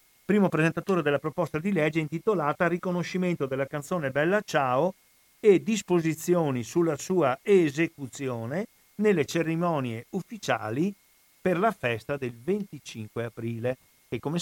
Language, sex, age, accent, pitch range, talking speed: Italian, male, 50-69, native, 125-175 Hz, 115 wpm